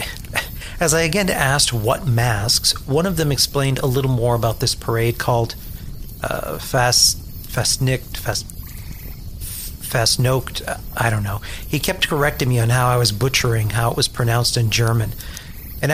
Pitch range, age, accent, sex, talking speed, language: 110-140 Hz, 40-59, American, male, 145 wpm, English